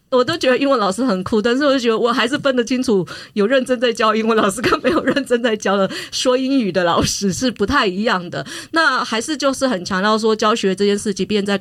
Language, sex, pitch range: Chinese, female, 180-235 Hz